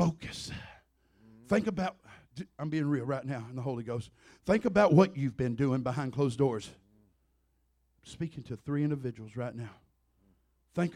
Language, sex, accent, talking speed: English, male, American, 155 wpm